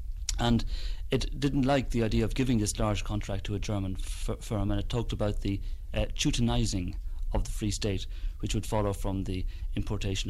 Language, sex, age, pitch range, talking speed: English, male, 40-59, 95-110 Hz, 185 wpm